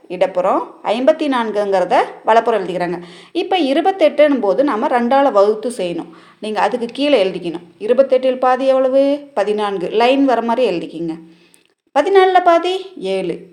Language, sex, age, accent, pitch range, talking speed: Tamil, female, 20-39, native, 200-320 Hz, 120 wpm